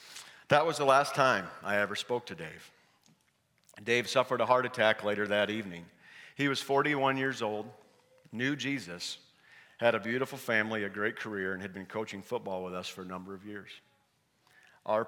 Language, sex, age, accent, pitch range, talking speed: English, male, 50-69, American, 100-120 Hz, 180 wpm